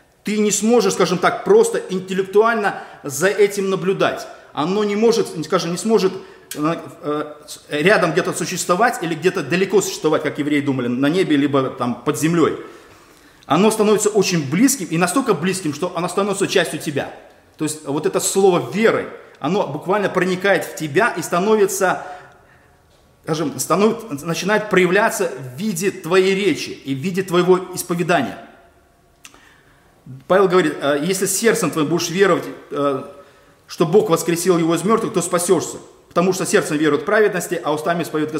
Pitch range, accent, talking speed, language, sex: 165-205 Hz, native, 140 wpm, Russian, male